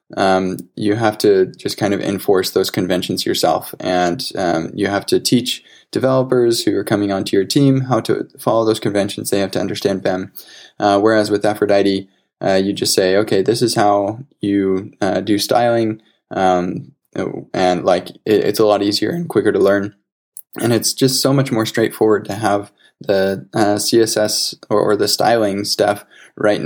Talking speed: 180 wpm